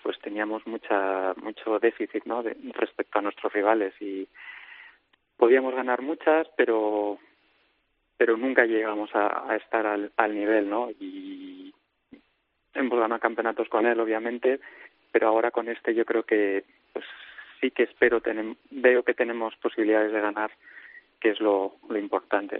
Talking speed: 150 wpm